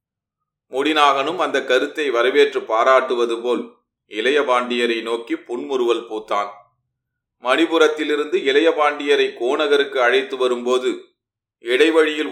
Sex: male